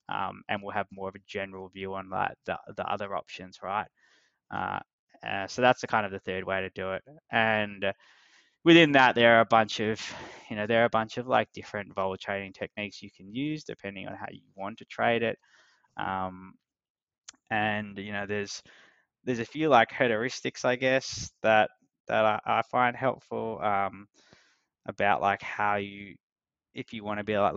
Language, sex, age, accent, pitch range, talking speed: English, male, 20-39, Australian, 100-115 Hz, 190 wpm